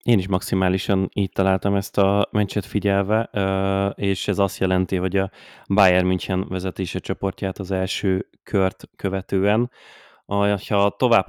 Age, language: 20-39, Hungarian